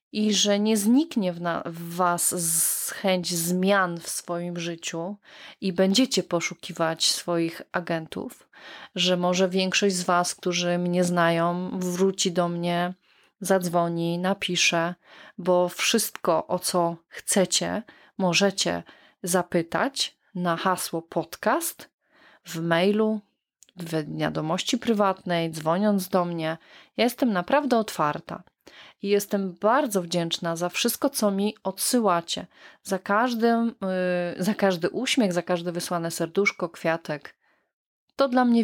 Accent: native